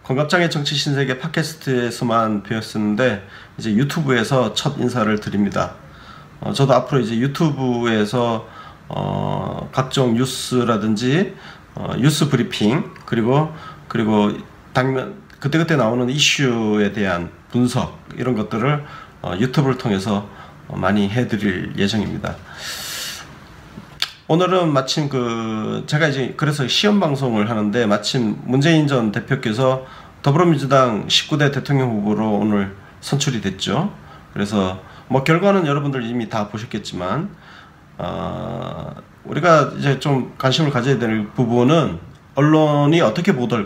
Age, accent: 40-59, native